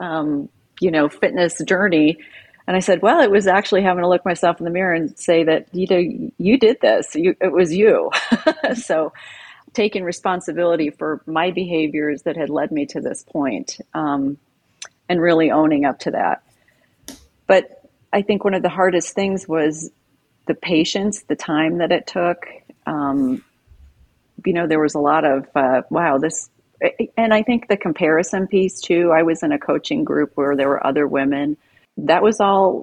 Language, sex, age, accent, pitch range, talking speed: English, female, 40-59, American, 145-185 Hz, 180 wpm